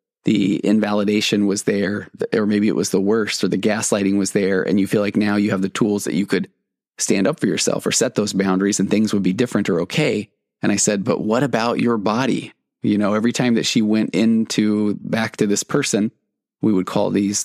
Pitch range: 105-115 Hz